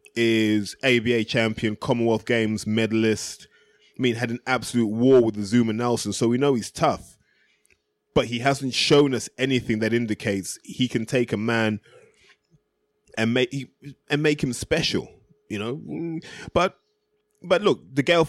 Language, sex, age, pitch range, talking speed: English, male, 20-39, 110-140 Hz, 150 wpm